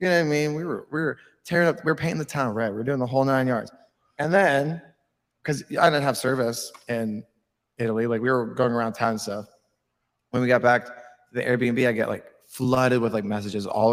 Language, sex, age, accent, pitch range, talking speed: English, male, 20-39, American, 115-140 Hz, 240 wpm